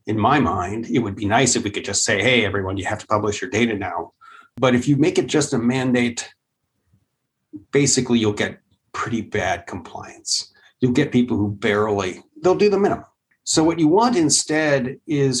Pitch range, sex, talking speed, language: 115-150 Hz, male, 195 wpm, English